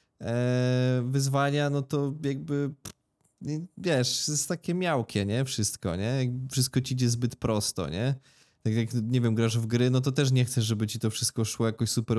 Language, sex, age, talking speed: Polish, male, 20-39, 175 wpm